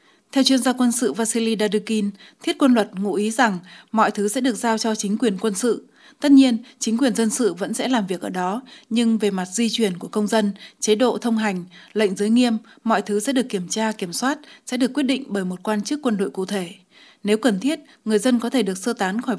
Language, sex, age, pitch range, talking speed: Vietnamese, female, 20-39, 205-245 Hz, 250 wpm